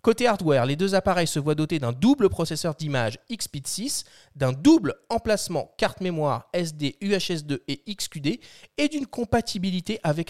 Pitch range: 150-220 Hz